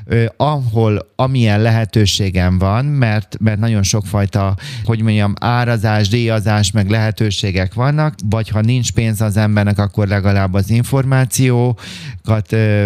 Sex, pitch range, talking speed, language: male, 105-120 Hz, 115 wpm, Hungarian